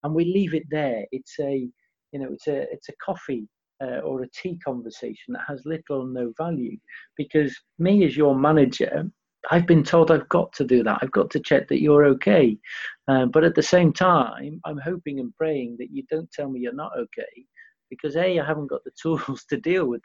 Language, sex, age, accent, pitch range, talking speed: English, male, 40-59, British, 125-170 Hz, 220 wpm